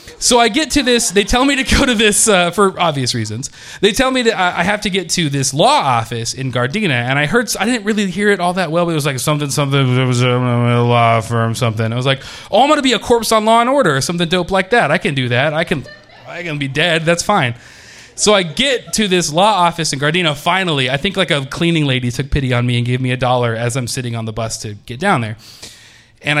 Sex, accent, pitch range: male, American, 130-205 Hz